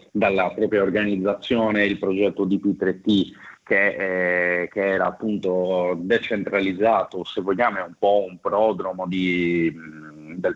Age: 30-49